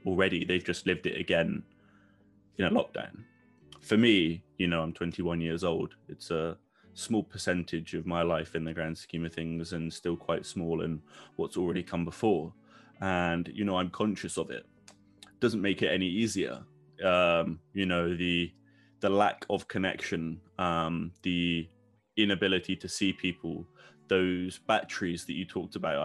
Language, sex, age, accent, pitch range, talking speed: English, male, 20-39, British, 85-100 Hz, 165 wpm